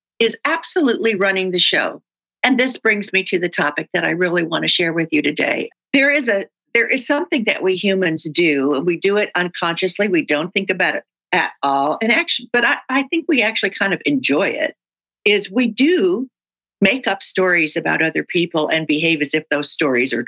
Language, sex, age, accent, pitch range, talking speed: English, female, 50-69, American, 165-215 Hz, 210 wpm